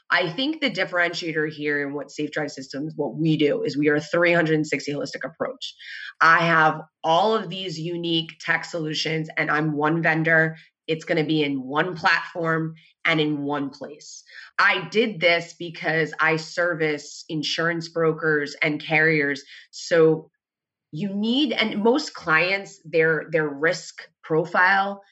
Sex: female